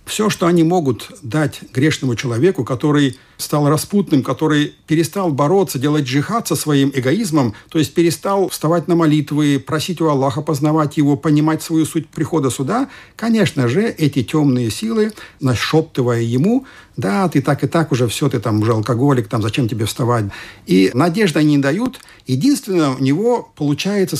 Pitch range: 130-185 Hz